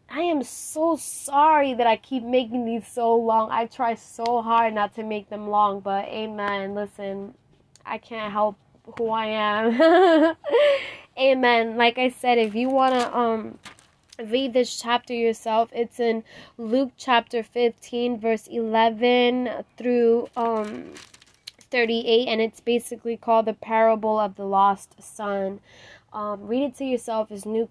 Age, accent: 20-39, American